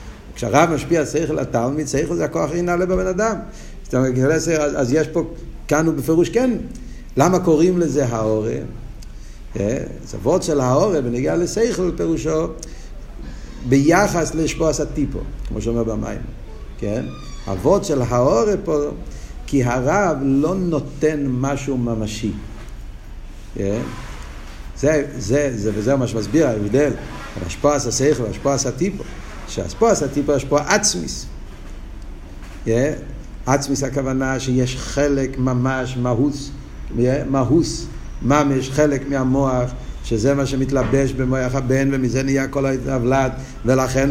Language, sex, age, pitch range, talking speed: Hebrew, male, 60-79, 125-155 Hz, 110 wpm